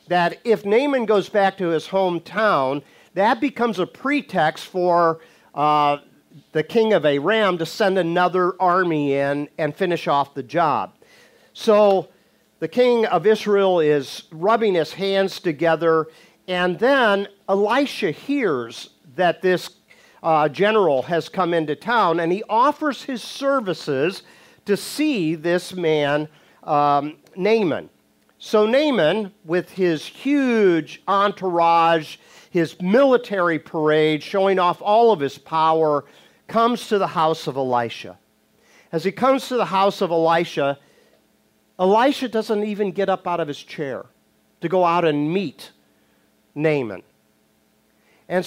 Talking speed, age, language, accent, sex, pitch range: 130 wpm, 50-69, English, American, male, 155-205 Hz